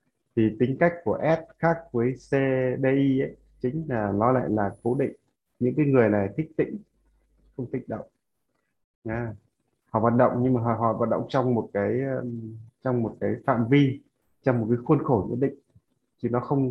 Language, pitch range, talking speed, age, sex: Vietnamese, 110-130 Hz, 190 wpm, 20-39, male